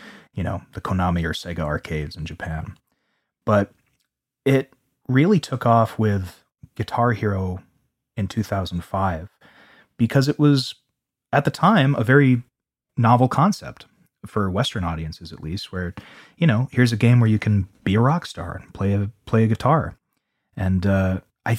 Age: 30-49